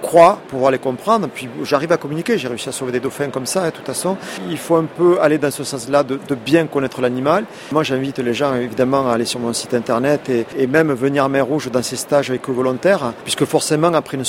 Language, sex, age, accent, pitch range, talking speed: French, male, 40-59, French, 125-155 Hz, 260 wpm